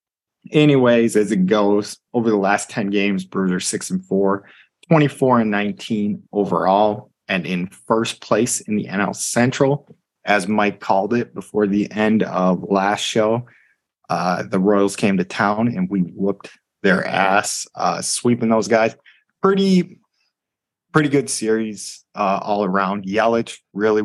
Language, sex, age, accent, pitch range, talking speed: English, male, 20-39, American, 100-120 Hz, 140 wpm